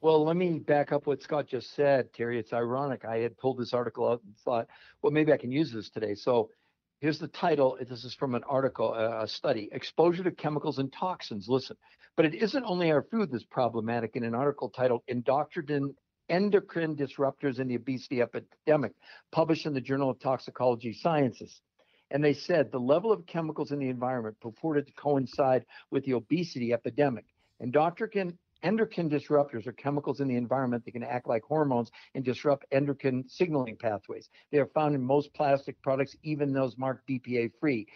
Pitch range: 125-155 Hz